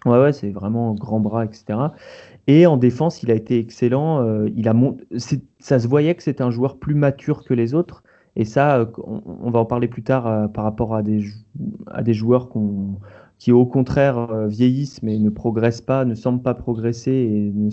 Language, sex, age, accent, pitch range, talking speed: French, male, 30-49, French, 110-130 Hz, 215 wpm